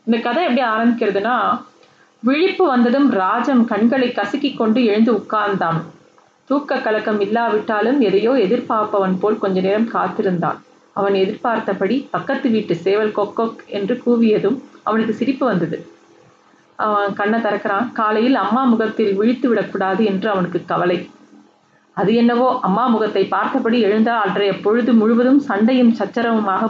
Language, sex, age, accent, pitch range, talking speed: Tamil, female, 30-49, native, 205-245 Hz, 115 wpm